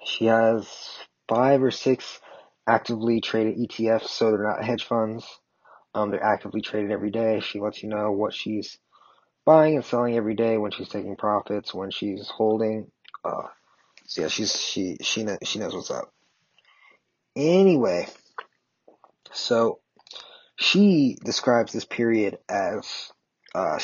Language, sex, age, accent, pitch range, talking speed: English, male, 20-39, American, 105-115 Hz, 145 wpm